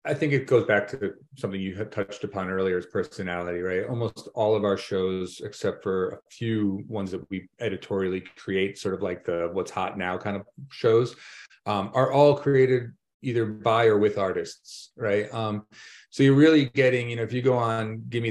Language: English